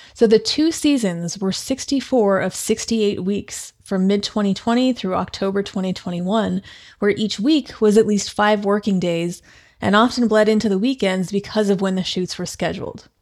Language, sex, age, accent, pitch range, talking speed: English, female, 30-49, American, 195-235 Hz, 165 wpm